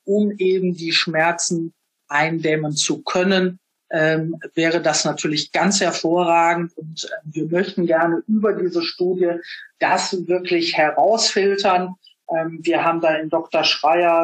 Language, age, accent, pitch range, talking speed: German, 50-69, German, 160-180 Hz, 125 wpm